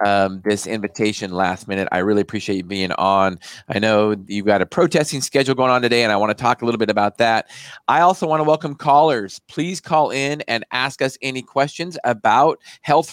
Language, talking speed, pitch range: English, 215 wpm, 110-140 Hz